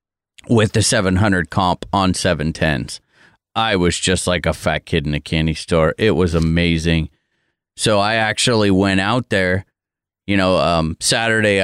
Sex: male